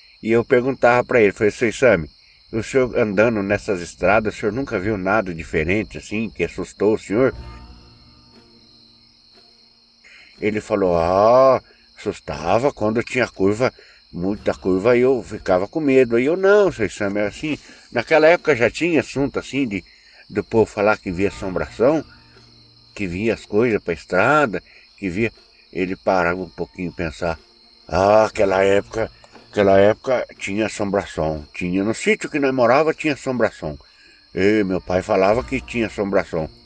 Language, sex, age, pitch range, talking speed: Portuguese, male, 60-79, 95-135 Hz, 150 wpm